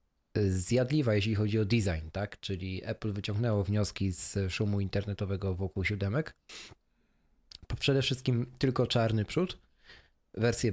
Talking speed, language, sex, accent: 115 wpm, Polish, male, native